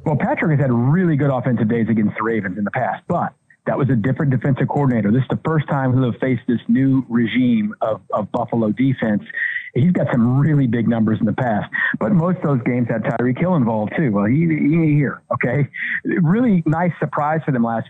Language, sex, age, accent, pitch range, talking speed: English, male, 50-69, American, 120-160 Hz, 225 wpm